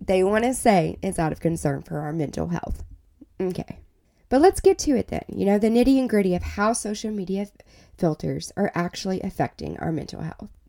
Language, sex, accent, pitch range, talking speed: English, female, American, 155-205 Hz, 195 wpm